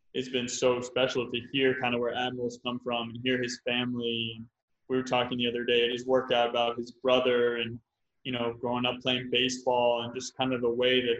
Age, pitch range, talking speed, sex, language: 20-39, 120-130 Hz, 225 wpm, male, English